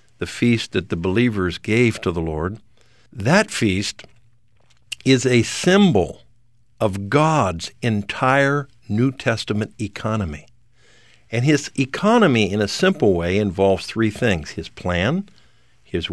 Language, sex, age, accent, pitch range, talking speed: English, male, 60-79, American, 100-125 Hz, 125 wpm